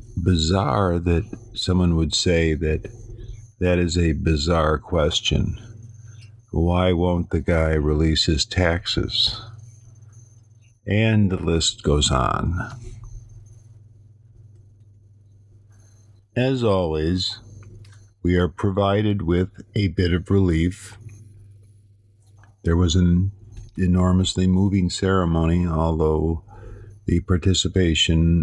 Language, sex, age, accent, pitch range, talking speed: English, male, 50-69, American, 85-105 Hz, 90 wpm